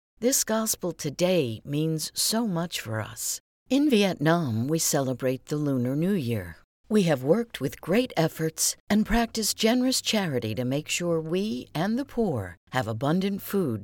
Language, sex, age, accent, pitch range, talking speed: English, female, 60-79, American, 130-205 Hz, 155 wpm